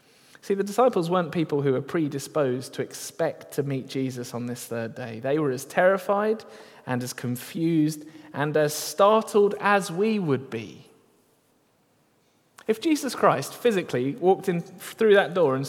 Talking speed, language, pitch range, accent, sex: 155 wpm, English, 130-190 Hz, British, male